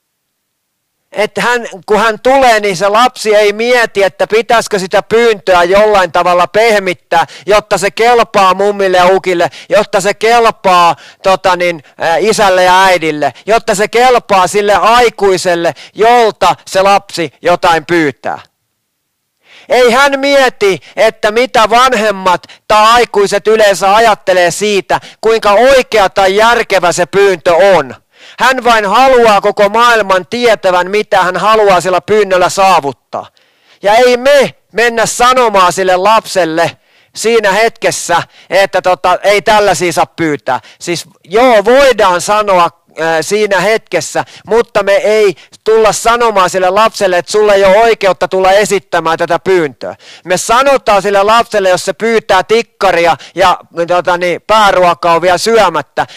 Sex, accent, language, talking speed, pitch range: male, native, Finnish, 125 wpm, 180-220 Hz